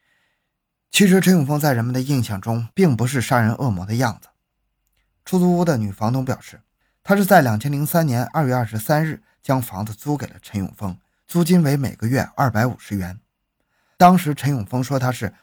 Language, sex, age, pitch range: Chinese, male, 20-39, 110-155 Hz